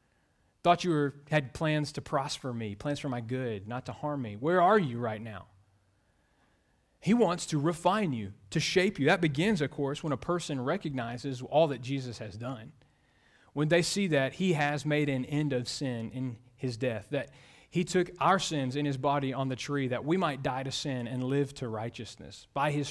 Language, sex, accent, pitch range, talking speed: English, male, American, 120-155 Hz, 205 wpm